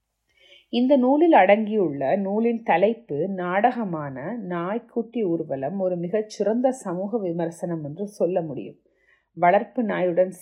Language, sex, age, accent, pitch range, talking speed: Tamil, female, 30-49, native, 170-220 Hz, 105 wpm